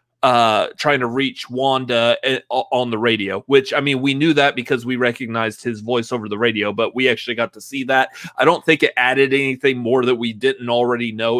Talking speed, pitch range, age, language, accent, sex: 215 wpm, 125-165 Hz, 30-49, English, American, male